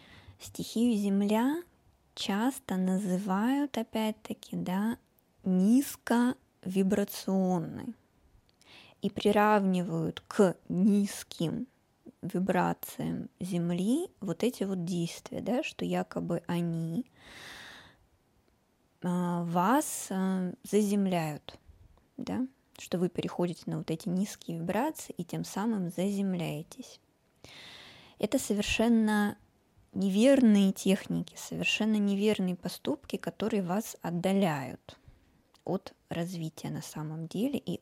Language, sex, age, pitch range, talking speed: Russian, female, 20-39, 175-210 Hz, 80 wpm